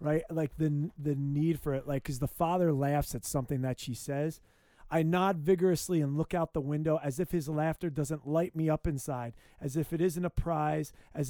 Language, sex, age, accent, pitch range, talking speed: English, male, 20-39, American, 125-155 Hz, 220 wpm